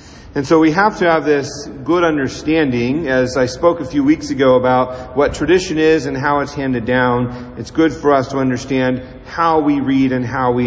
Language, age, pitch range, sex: English, 40-59, 125-160 Hz, male